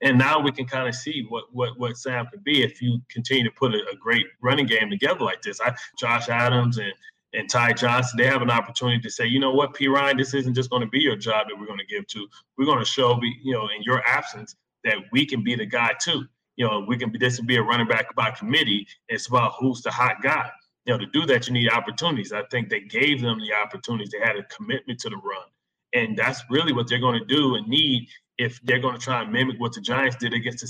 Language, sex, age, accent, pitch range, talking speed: English, male, 30-49, American, 115-130 Hz, 265 wpm